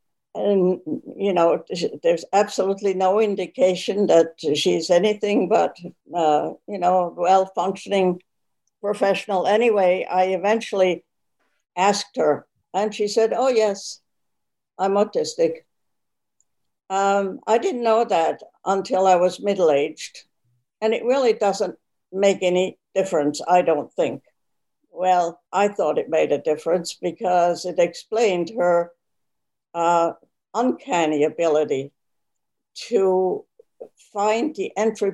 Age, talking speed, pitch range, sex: 60-79, 110 wpm, 175-210 Hz, female